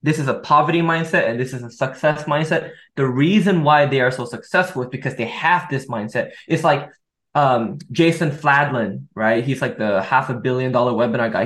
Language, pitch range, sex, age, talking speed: English, 135-180 Hz, male, 20-39, 205 wpm